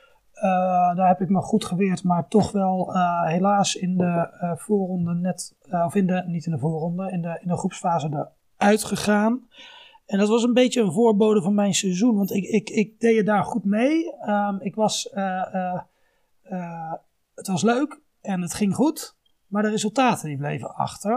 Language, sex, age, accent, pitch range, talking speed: Dutch, male, 30-49, Dutch, 180-225 Hz, 195 wpm